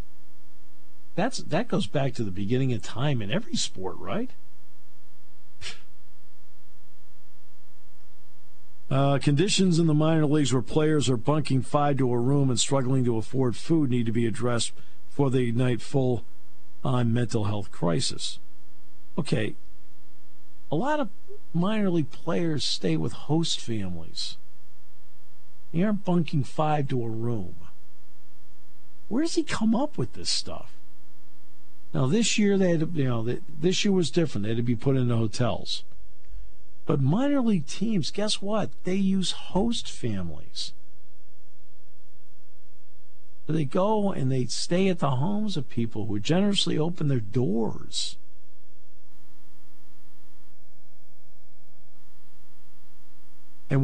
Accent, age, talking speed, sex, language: American, 50-69, 125 wpm, male, English